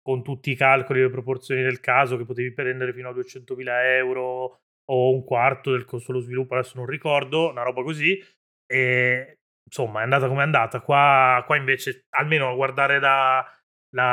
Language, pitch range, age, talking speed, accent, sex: Italian, 125-140 Hz, 30-49, 185 wpm, native, male